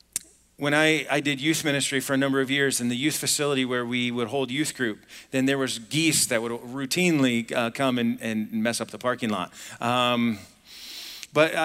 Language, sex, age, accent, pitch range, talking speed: English, male, 40-59, American, 125-160 Hz, 200 wpm